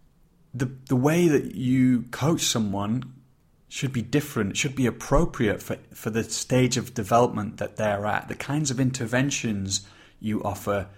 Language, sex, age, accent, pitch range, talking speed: English, male, 30-49, British, 100-130 Hz, 155 wpm